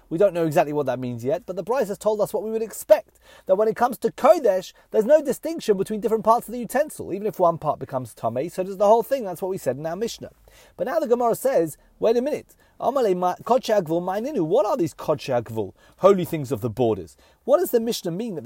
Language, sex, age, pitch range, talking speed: English, male, 30-49, 160-240 Hz, 245 wpm